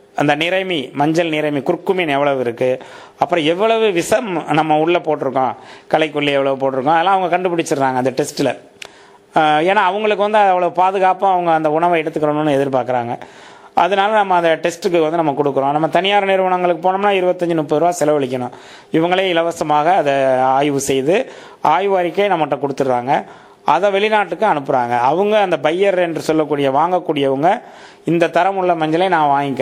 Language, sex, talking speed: English, male, 125 wpm